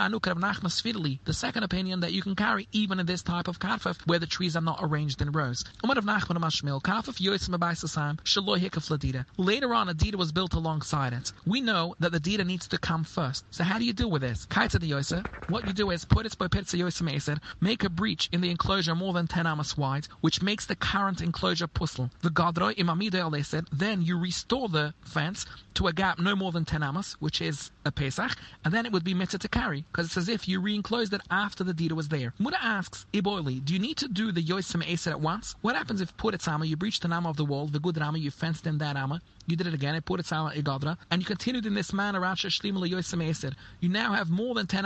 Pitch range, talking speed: 155-195 Hz, 215 wpm